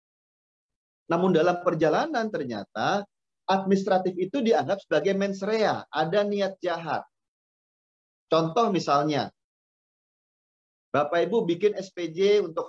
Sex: male